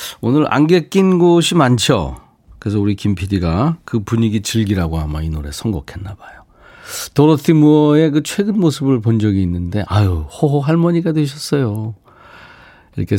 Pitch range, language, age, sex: 95-140 Hz, Korean, 40-59, male